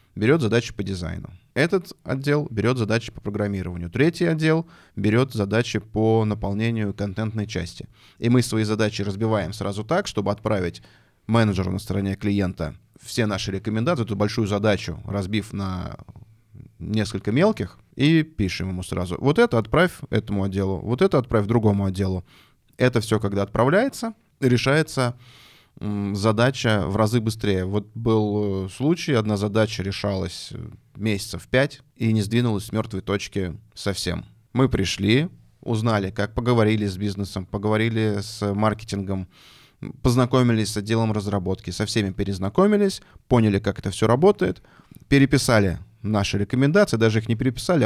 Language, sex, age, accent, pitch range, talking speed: Russian, male, 20-39, native, 100-120 Hz, 135 wpm